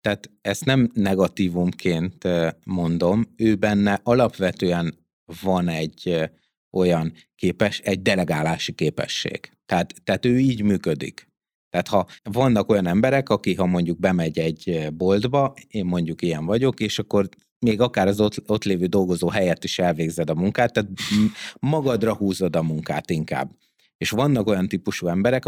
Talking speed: 140 wpm